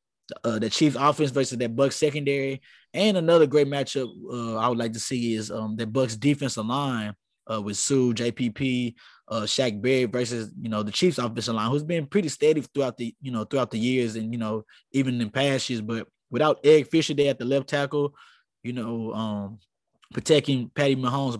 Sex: male